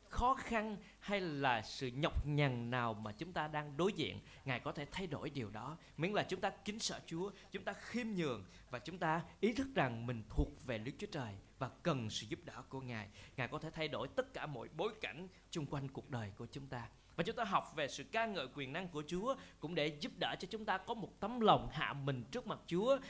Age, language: 20-39, Vietnamese